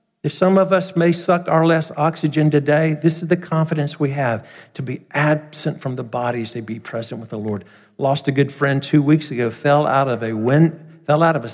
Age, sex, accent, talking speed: 50-69, male, American, 215 wpm